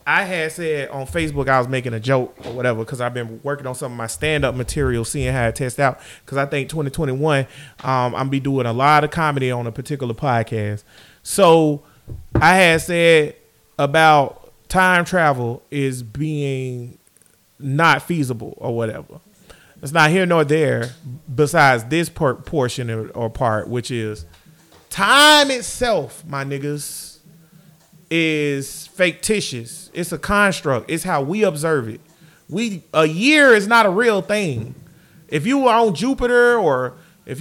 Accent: American